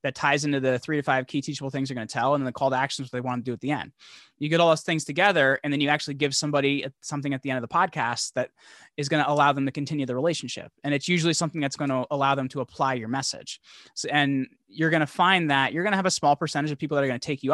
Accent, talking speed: American, 310 wpm